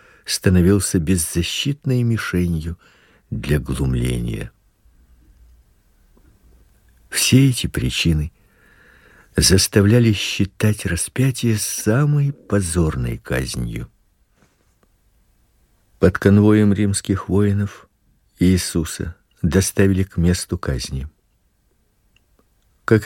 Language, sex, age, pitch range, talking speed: Russian, male, 50-69, 85-110 Hz, 60 wpm